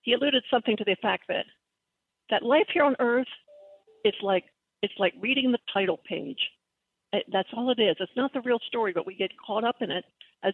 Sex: female